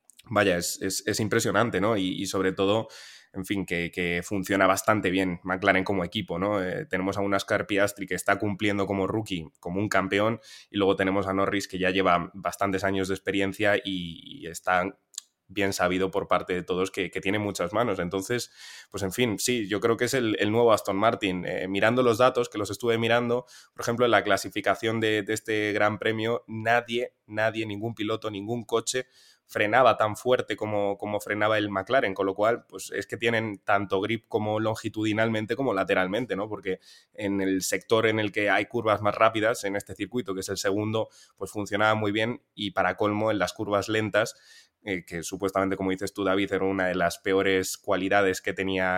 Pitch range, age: 95-110 Hz, 20-39